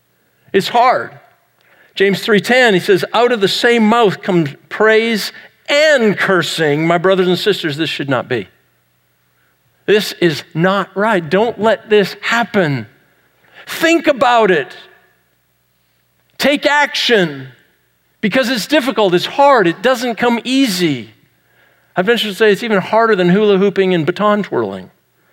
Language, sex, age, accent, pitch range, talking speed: English, male, 50-69, American, 170-240 Hz, 135 wpm